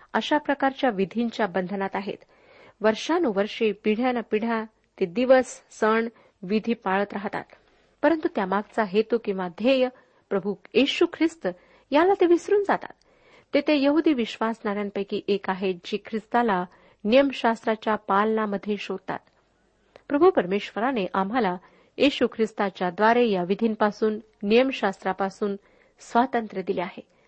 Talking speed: 100 wpm